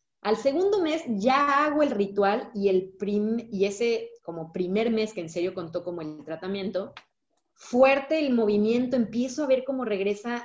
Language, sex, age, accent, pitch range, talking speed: Spanish, female, 30-49, Mexican, 195-255 Hz, 170 wpm